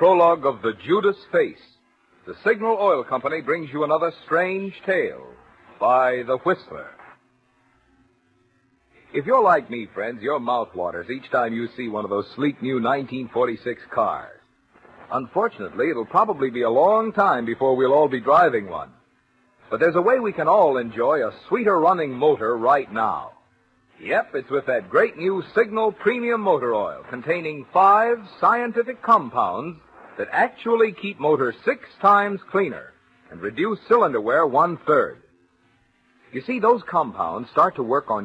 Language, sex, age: English, male, 50-69